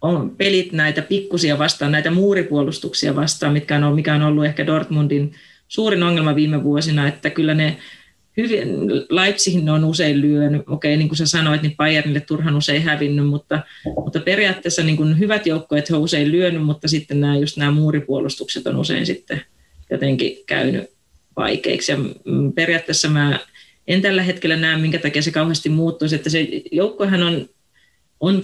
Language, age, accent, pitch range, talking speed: Finnish, 30-49, native, 150-170 Hz, 155 wpm